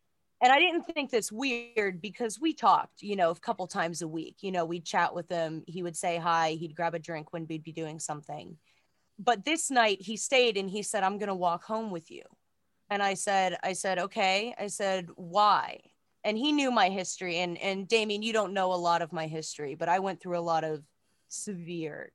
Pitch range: 170-200 Hz